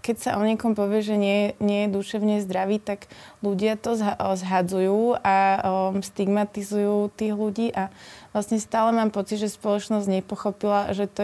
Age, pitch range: 20-39, 180-200 Hz